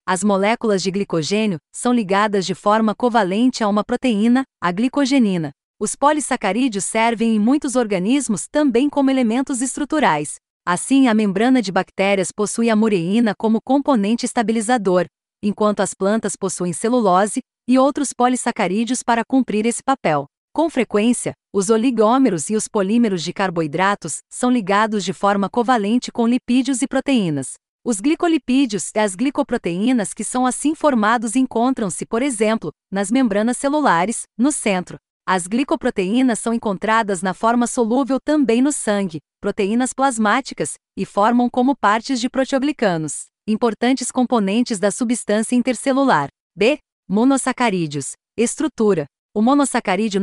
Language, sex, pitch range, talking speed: Portuguese, female, 200-255 Hz, 130 wpm